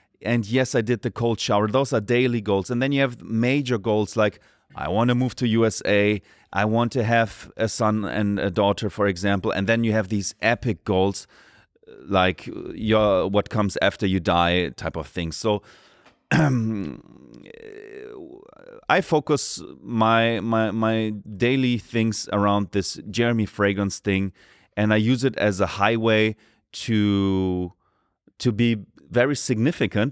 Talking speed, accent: 155 wpm, German